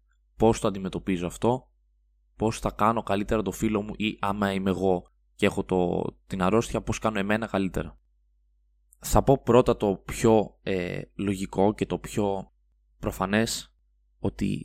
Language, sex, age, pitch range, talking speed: Greek, male, 20-39, 95-115 Hz, 150 wpm